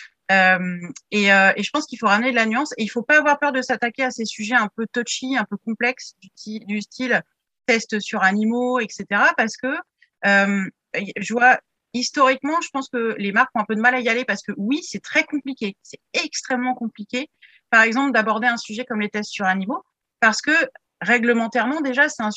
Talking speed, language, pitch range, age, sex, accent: 220 wpm, French, 200-255 Hz, 30-49, female, French